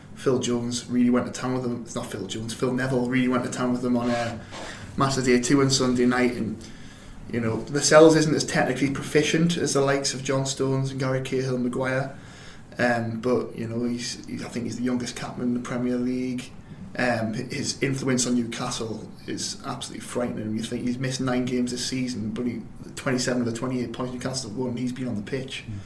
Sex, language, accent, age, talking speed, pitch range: male, English, British, 20-39, 220 wpm, 115-130 Hz